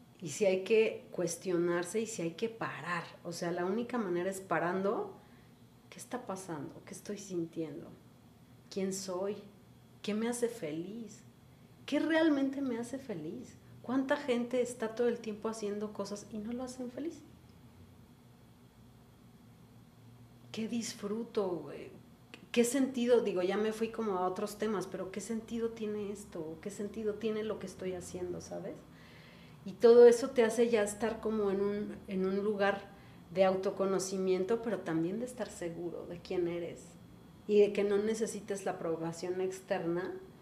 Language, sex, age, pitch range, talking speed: Spanish, female, 40-59, 180-225 Hz, 155 wpm